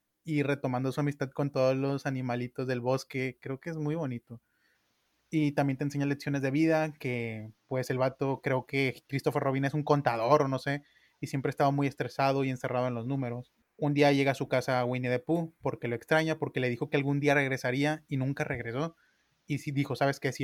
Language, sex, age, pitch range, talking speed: Spanish, male, 20-39, 130-150 Hz, 215 wpm